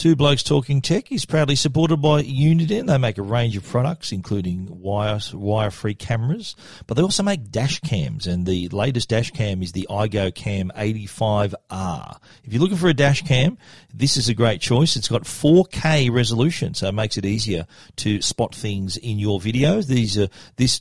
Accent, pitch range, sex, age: Australian, 105-130 Hz, male, 40-59